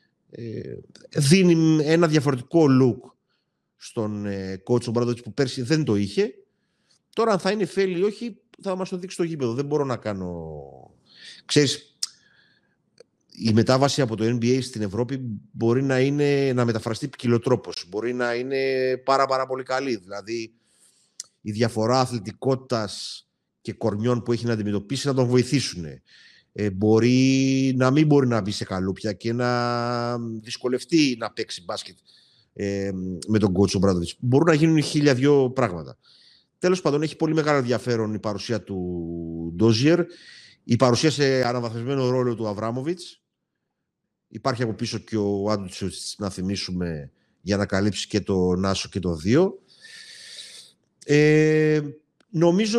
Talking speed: 140 wpm